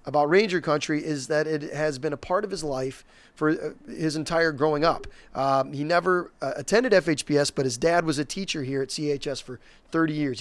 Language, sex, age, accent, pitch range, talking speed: English, male, 30-49, American, 135-160 Hz, 210 wpm